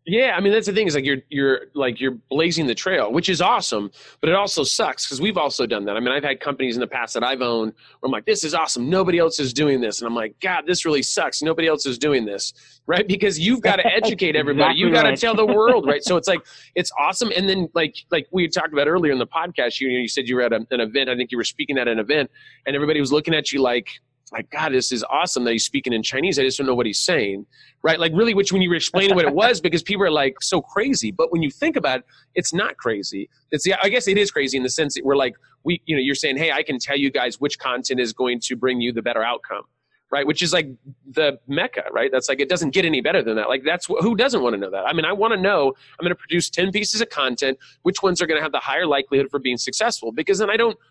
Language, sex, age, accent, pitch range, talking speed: English, male, 30-49, American, 130-180 Hz, 290 wpm